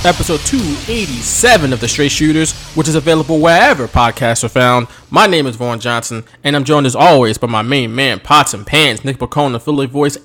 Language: English